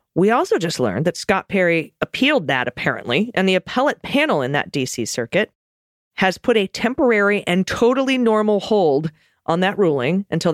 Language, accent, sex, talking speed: English, American, female, 170 wpm